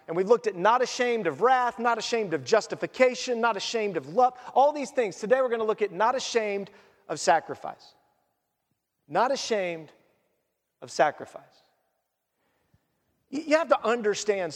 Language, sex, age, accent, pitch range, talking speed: English, male, 40-59, American, 190-240 Hz, 155 wpm